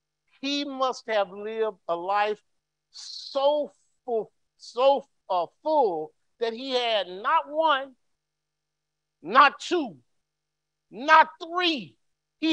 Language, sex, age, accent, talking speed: English, male, 50-69, American, 95 wpm